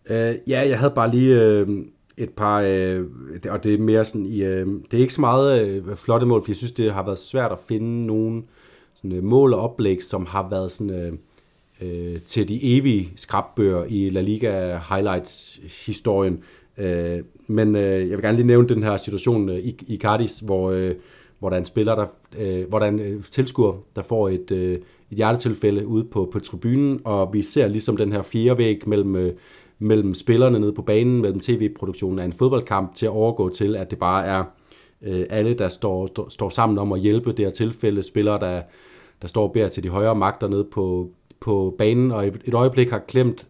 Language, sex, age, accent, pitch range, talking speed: Danish, male, 30-49, native, 95-115 Hz, 175 wpm